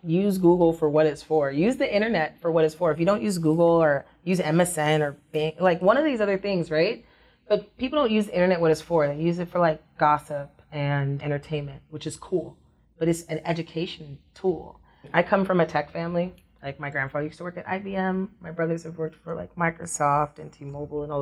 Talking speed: 225 wpm